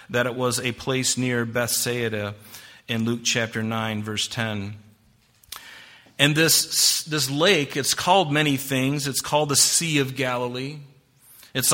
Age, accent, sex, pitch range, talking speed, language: 40-59, American, male, 125-145 Hz, 145 wpm, English